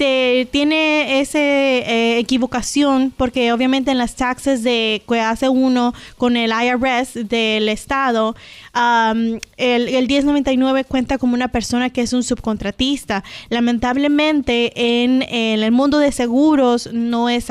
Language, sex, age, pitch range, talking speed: English, female, 20-39, 220-255 Hz, 135 wpm